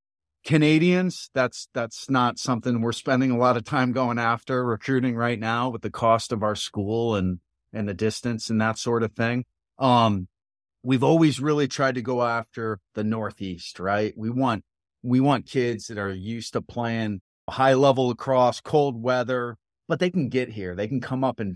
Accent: American